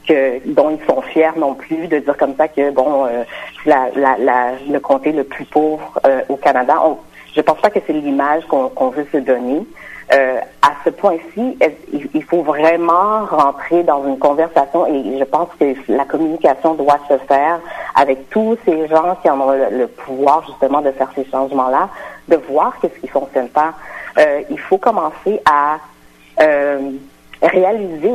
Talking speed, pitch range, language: 180 wpm, 140-185 Hz, French